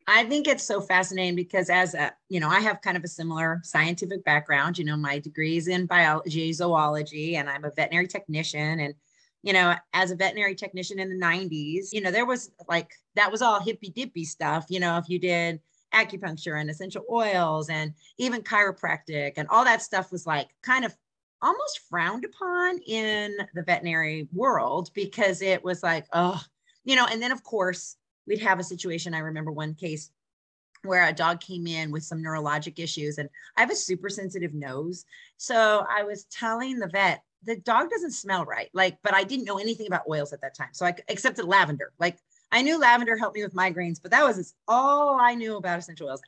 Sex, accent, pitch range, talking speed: female, American, 160-210 Hz, 200 wpm